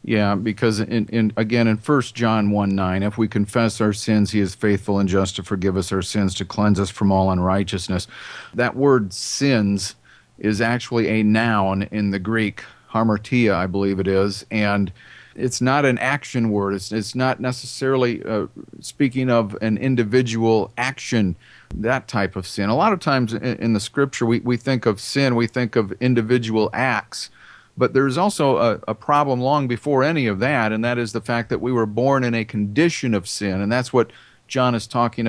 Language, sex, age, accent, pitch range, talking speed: English, male, 40-59, American, 100-125 Hz, 195 wpm